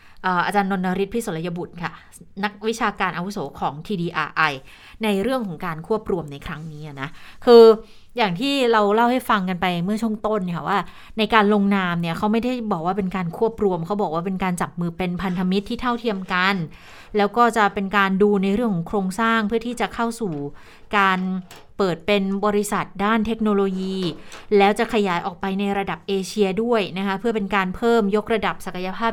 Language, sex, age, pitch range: Thai, female, 30-49, 180-225 Hz